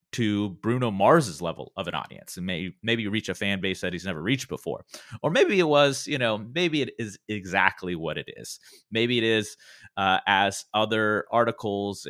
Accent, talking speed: American, 200 wpm